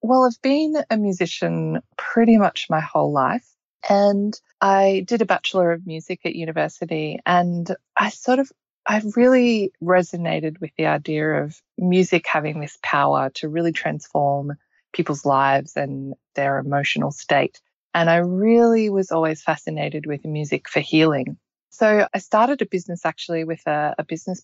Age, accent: 20-39, Australian